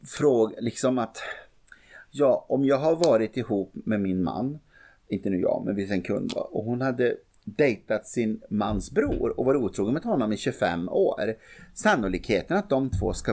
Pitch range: 100-140 Hz